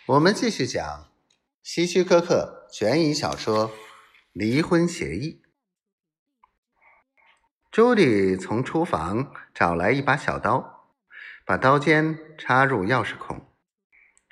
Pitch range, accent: 110-185 Hz, native